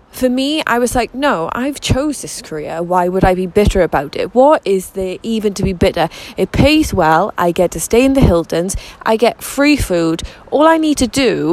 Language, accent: English, British